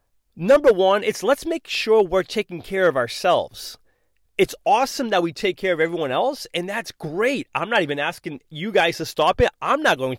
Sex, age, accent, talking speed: male, 30-49, American, 205 wpm